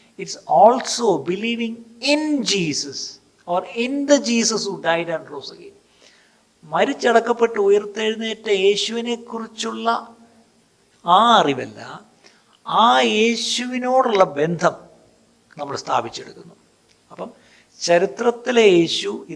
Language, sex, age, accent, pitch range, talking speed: Malayalam, male, 60-79, native, 150-225 Hz, 115 wpm